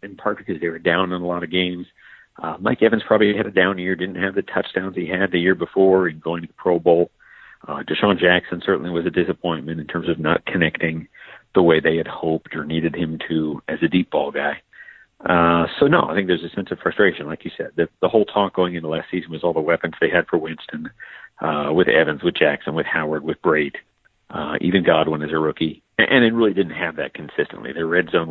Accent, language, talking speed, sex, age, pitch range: American, English, 245 wpm, male, 50-69, 85-100 Hz